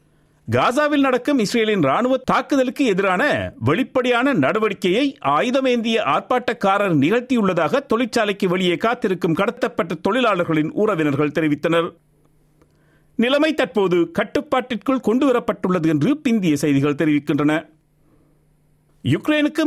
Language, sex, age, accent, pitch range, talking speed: Tamil, male, 50-69, native, 160-255 Hz, 75 wpm